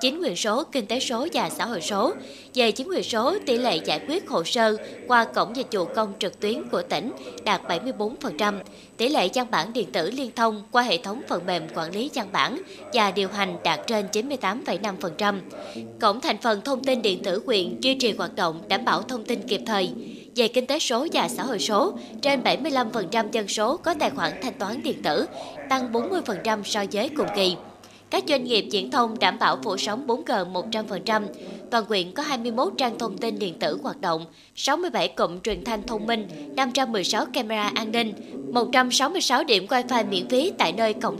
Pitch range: 205-255 Hz